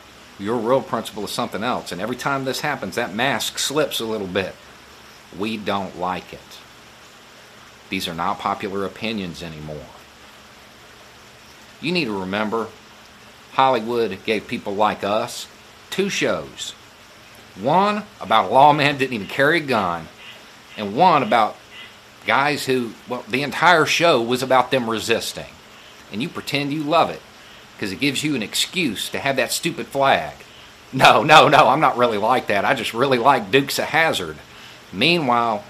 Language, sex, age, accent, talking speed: English, male, 50-69, American, 160 wpm